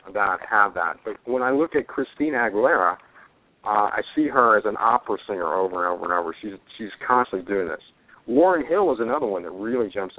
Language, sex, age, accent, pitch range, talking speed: English, male, 50-69, American, 110-155 Hz, 210 wpm